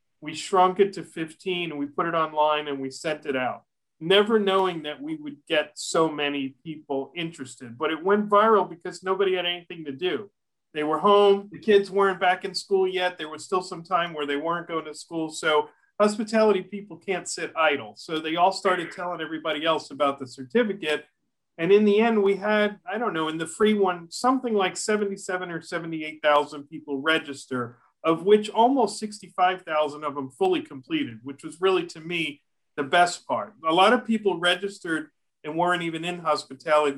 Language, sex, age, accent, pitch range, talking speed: English, male, 40-59, American, 150-195 Hz, 190 wpm